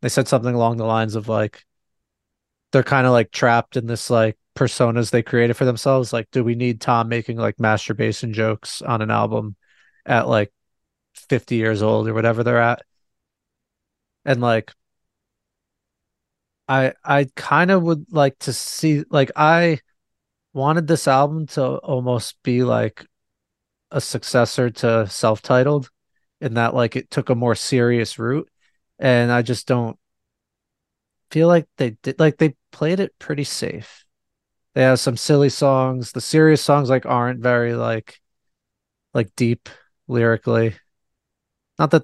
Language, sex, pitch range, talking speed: English, male, 115-140 Hz, 150 wpm